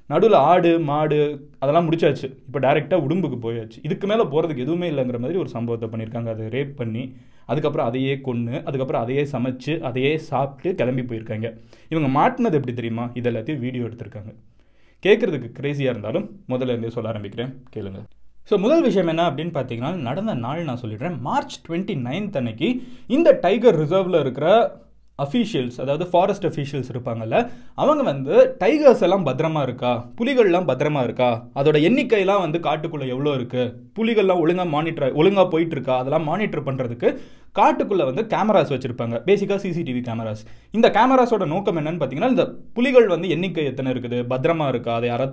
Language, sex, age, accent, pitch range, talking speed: Tamil, male, 20-39, native, 125-190 Hz, 155 wpm